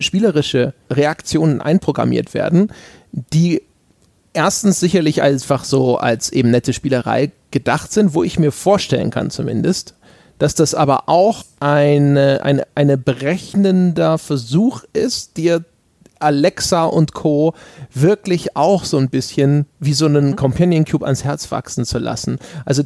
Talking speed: 135 wpm